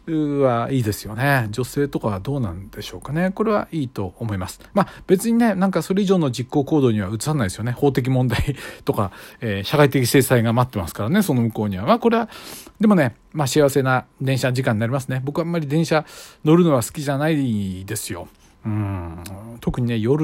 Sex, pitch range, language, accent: male, 110-165 Hz, Japanese, native